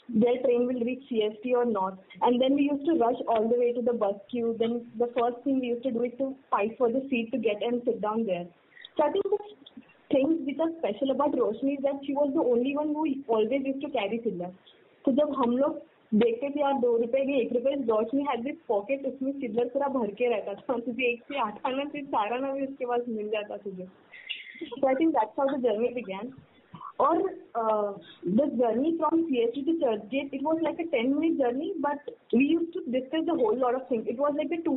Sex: female